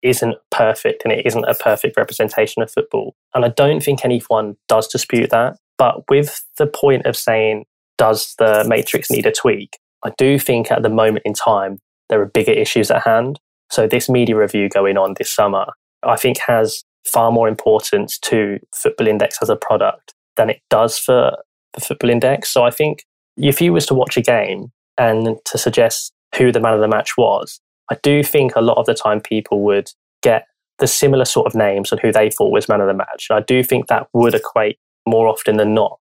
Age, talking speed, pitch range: 10-29, 210 wpm, 110-140 Hz